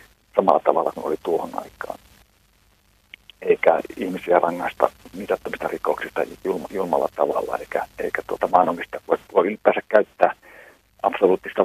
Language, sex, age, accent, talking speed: Finnish, male, 50-69, native, 110 wpm